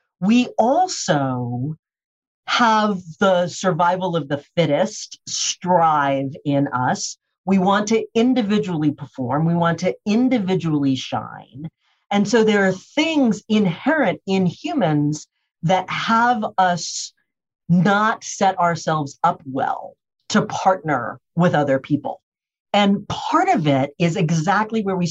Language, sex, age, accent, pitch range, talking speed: English, female, 40-59, American, 150-215 Hz, 120 wpm